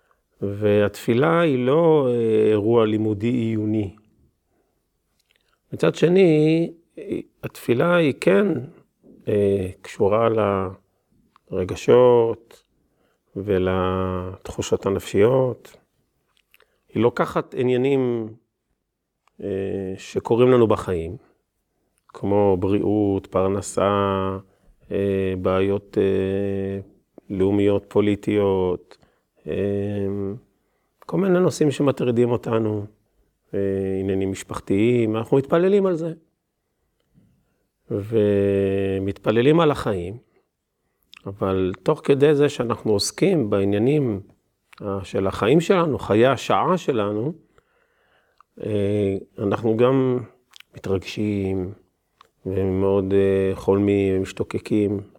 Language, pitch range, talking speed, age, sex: Hebrew, 95-120 Hz, 65 wpm, 40-59, male